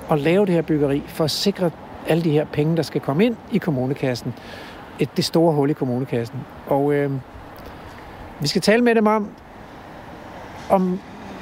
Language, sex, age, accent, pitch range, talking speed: Danish, male, 60-79, native, 150-200 Hz, 170 wpm